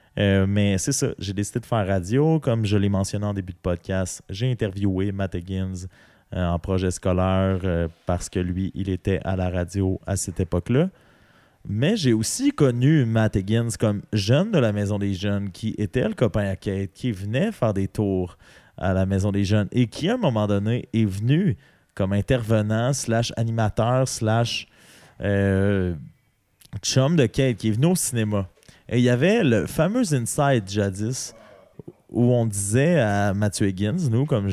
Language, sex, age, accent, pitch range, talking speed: French, male, 30-49, Canadian, 100-130 Hz, 180 wpm